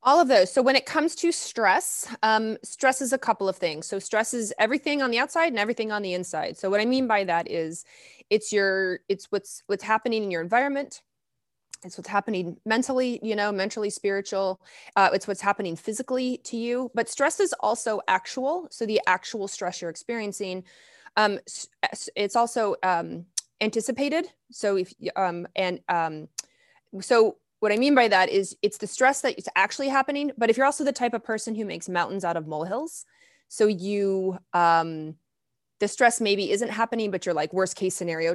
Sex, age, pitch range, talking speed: female, 20-39, 175-230 Hz, 190 wpm